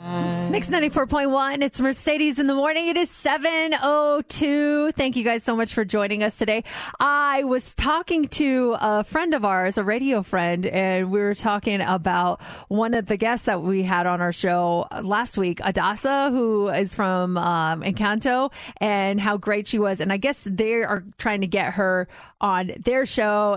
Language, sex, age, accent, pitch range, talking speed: English, female, 30-49, American, 190-250 Hz, 180 wpm